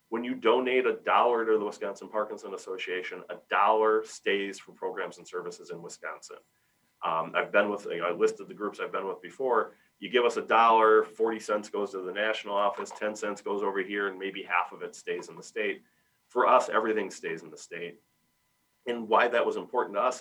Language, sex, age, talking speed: English, male, 30-49, 210 wpm